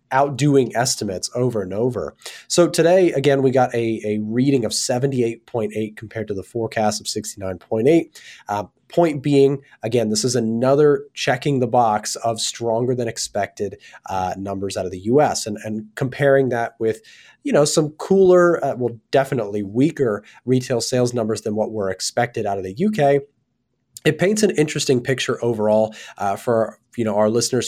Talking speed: 165 wpm